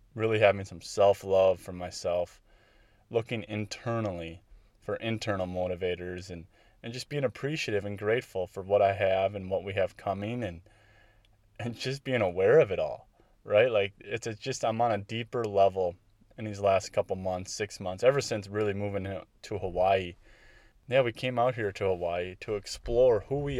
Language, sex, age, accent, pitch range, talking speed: English, male, 20-39, American, 95-115 Hz, 175 wpm